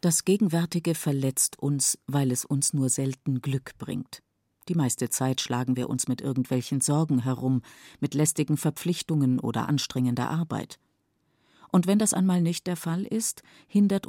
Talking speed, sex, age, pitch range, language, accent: 155 wpm, female, 50-69, 125-170 Hz, German, German